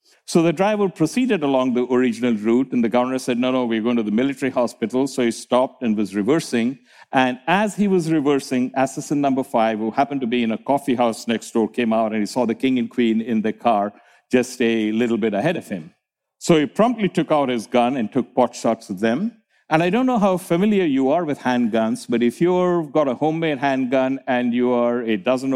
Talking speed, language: 230 wpm, English